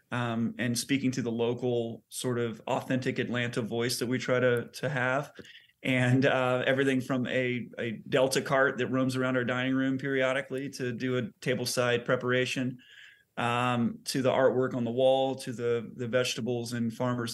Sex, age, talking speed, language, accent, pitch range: male, 30-49, 175 wpm, English, American, 125-135 Hz